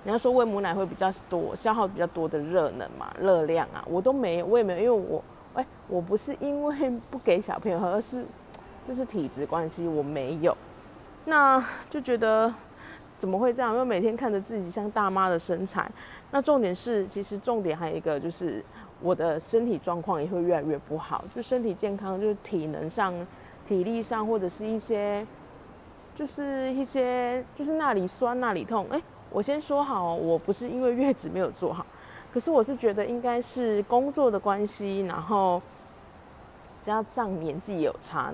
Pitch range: 180-245 Hz